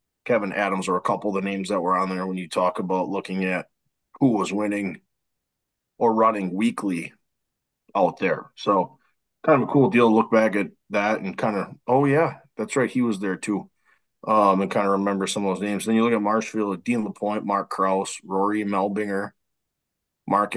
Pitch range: 95-110 Hz